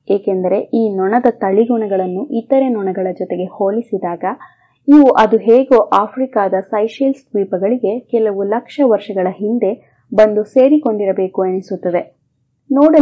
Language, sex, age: English, female, 20-39